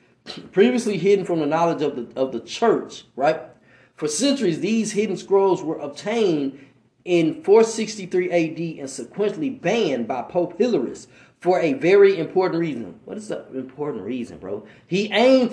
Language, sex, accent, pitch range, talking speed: English, male, American, 175-255 Hz, 155 wpm